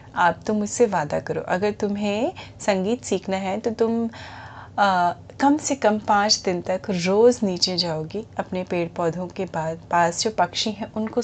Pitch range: 185-240 Hz